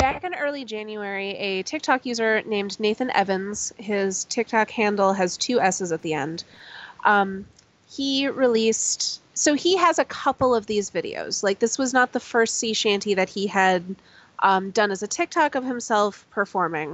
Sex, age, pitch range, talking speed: female, 30-49, 200-250 Hz, 175 wpm